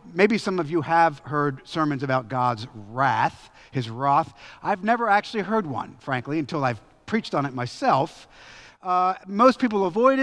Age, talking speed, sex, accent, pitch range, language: 40-59, 165 wpm, male, American, 155-230 Hz, English